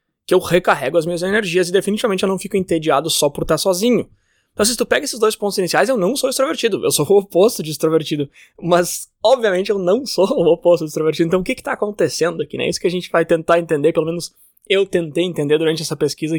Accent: Brazilian